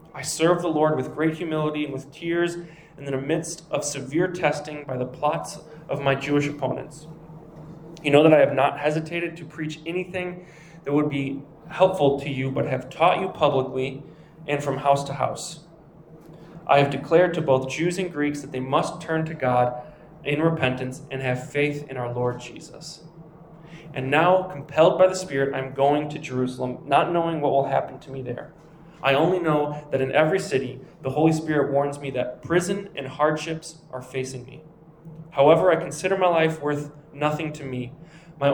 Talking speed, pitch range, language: 190 wpm, 140-165 Hz, English